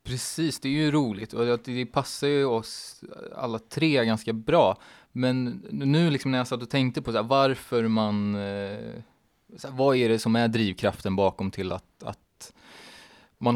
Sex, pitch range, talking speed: male, 95-125 Hz, 175 wpm